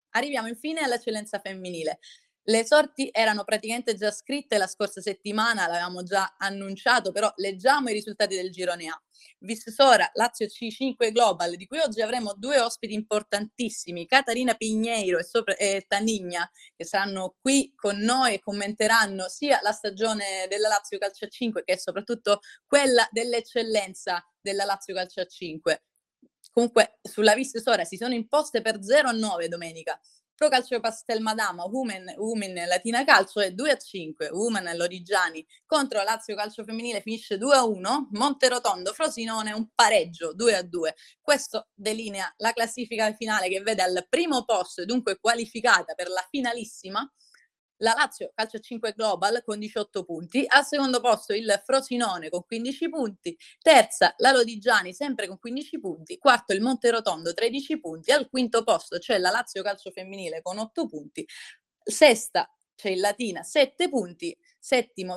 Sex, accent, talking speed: female, native, 155 wpm